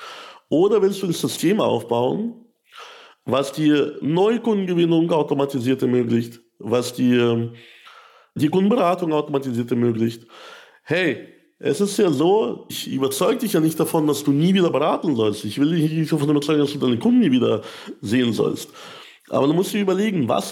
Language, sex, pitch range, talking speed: German, male, 135-210 Hz, 160 wpm